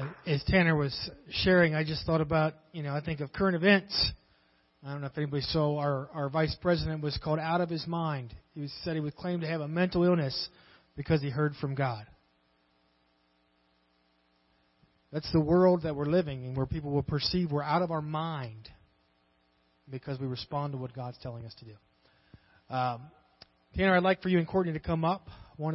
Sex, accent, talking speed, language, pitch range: male, American, 200 wpm, English, 135-180 Hz